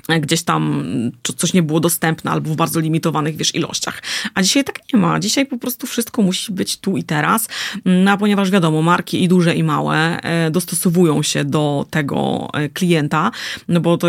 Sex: female